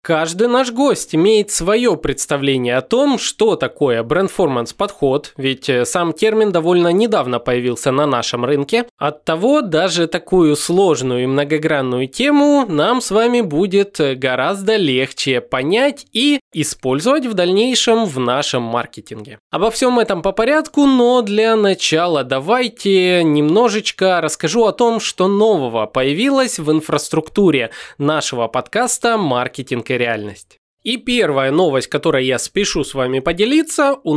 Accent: native